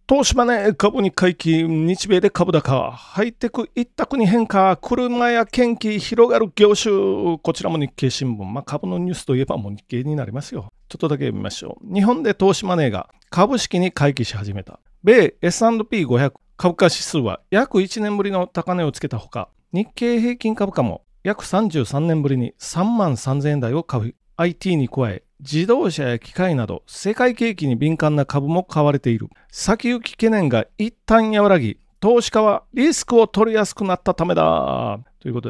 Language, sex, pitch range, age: Japanese, male, 140-215 Hz, 40-59